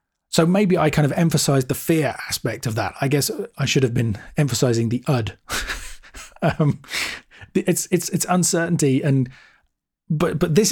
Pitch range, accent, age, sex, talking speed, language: 120-150 Hz, British, 30-49, male, 160 wpm, English